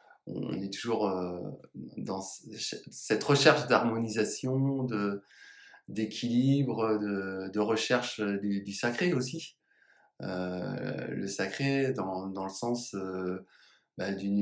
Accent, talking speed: French, 110 wpm